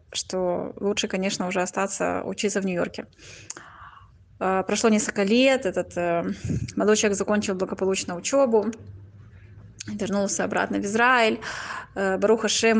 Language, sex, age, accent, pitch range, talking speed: Russian, female, 20-39, native, 180-215 Hz, 110 wpm